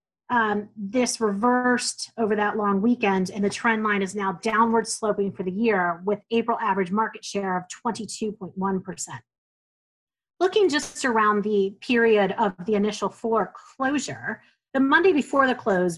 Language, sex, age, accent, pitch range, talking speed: English, female, 30-49, American, 195-235 Hz, 150 wpm